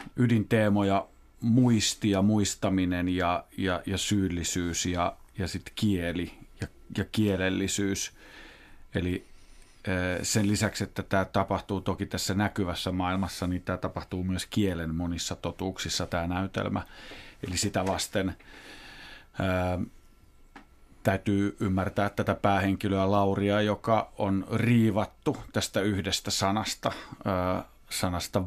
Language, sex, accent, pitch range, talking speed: Finnish, male, native, 95-105 Hz, 110 wpm